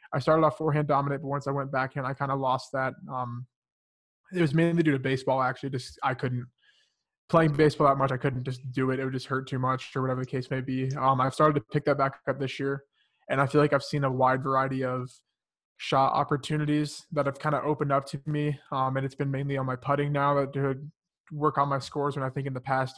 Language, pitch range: English, 130-145 Hz